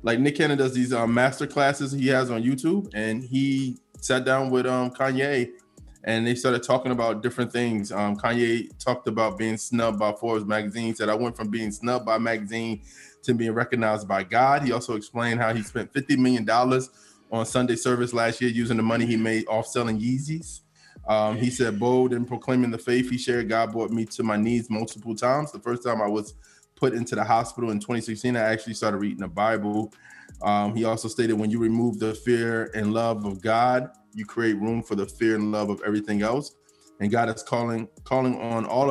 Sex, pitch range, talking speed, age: male, 110-125 Hz, 210 wpm, 20-39